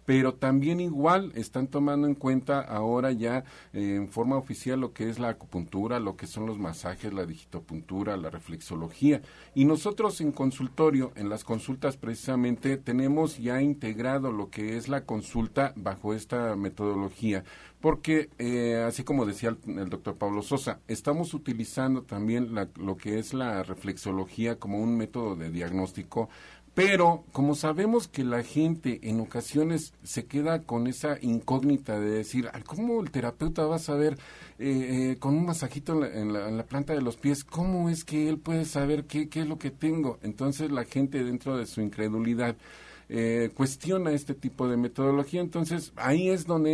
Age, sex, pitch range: 50-69, male, 110-145 Hz